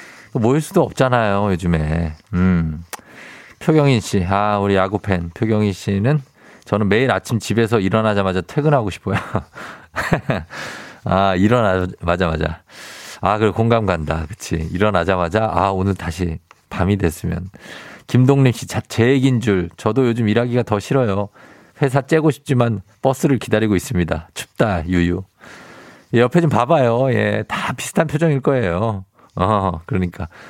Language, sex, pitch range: Korean, male, 95-135 Hz